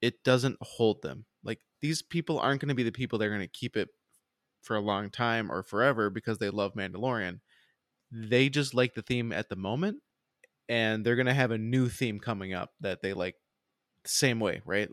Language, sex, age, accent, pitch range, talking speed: English, male, 20-39, American, 105-130 Hz, 215 wpm